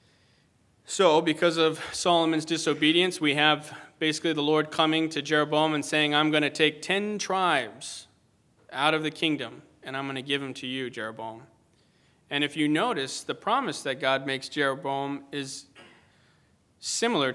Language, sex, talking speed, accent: English, male, 160 wpm, American